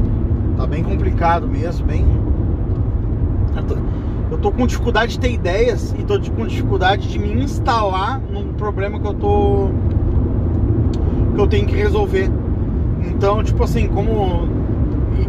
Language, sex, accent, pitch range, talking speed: Portuguese, male, Brazilian, 90-110 Hz, 140 wpm